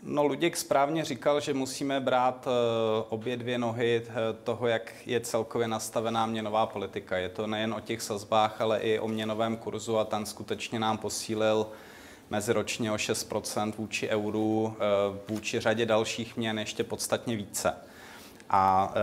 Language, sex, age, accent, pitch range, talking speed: Czech, male, 30-49, native, 110-130 Hz, 150 wpm